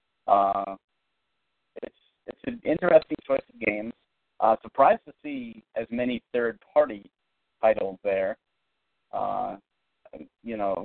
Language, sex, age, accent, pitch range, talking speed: English, male, 30-49, American, 100-125 Hz, 120 wpm